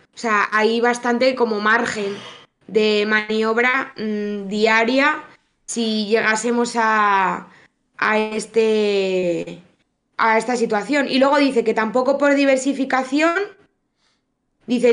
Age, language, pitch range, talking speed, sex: 20-39, Spanish, 225-275 Hz, 90 wpm, female